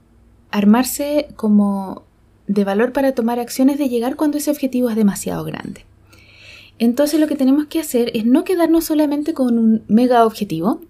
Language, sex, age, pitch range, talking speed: Spanish, female, 20-39, 205-255 Hz, 160 wpm